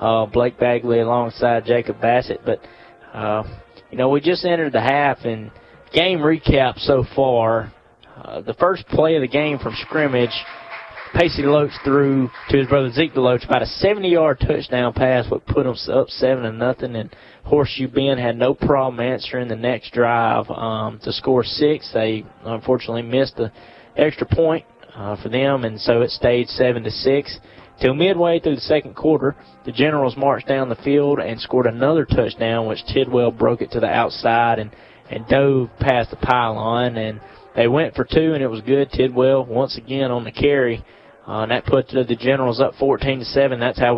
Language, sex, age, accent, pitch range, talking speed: English, male, 20-39, American, 115-135 Hz, 175 wpm